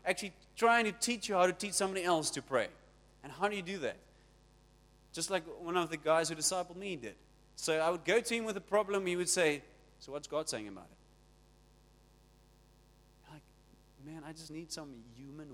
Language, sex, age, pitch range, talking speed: English, male, 30-49, 150-195 Hz, 205 wpm